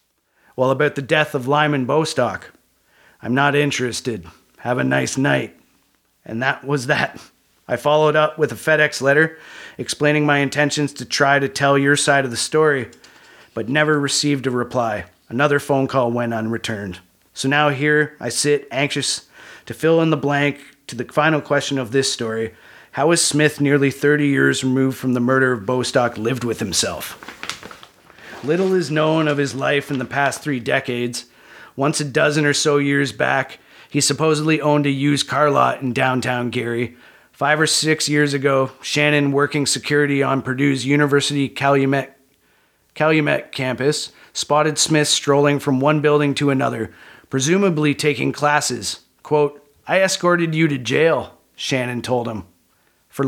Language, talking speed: English, 160 wpm